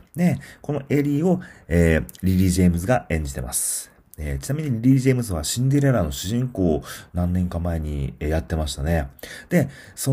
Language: Japanese